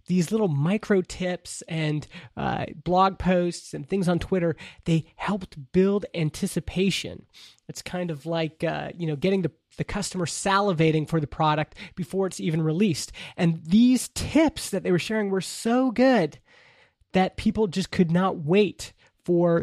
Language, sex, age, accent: English, male, 20-39, American